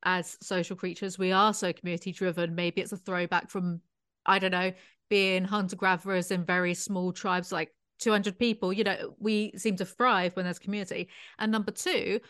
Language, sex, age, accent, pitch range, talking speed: English, female, 30-49, British, 190-230 Hz, 175 wpm